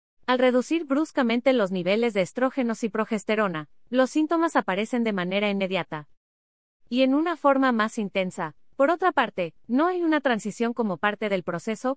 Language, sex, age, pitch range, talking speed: Spanish, female, 30-49, 185-265 Hz, 160 wpm